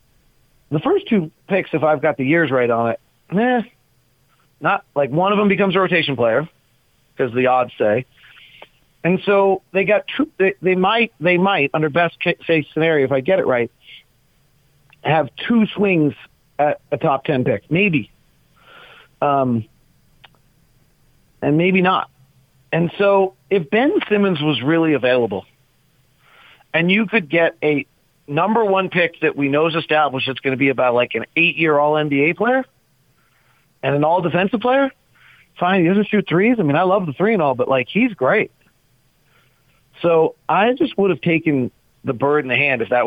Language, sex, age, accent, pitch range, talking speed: English, male, 40-59, American, 135-185 Hz, 170 wpm